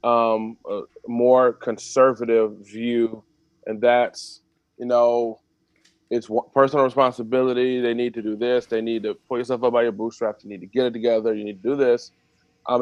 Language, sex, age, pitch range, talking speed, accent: English, male, 20-39, 115-140 Hz, 180 wpm, American